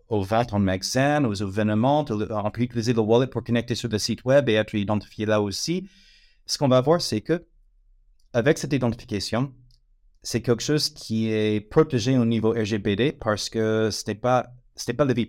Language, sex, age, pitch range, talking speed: French, male, 30-49, 105-130 Hz, 195 wpm